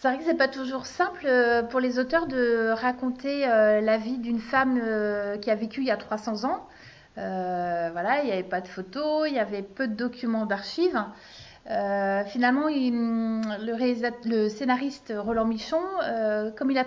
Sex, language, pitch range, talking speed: female, French, 215-260 Hz, 185 wpm